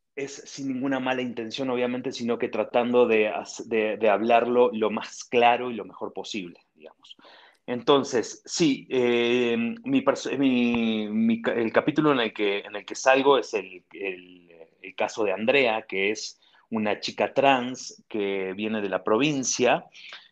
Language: Spanish